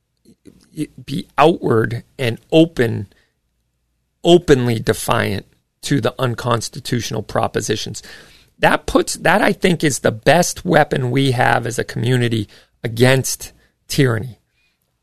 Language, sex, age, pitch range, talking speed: English, male, 40-59, 110-145 Hz, 105 wpm